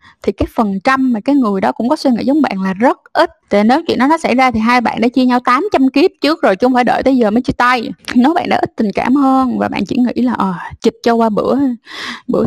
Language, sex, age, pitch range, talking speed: Vietnamese, female, 20-39, 220-270 Hz, 290 wpm